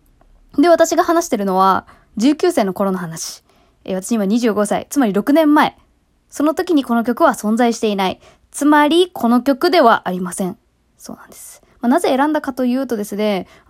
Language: Japanese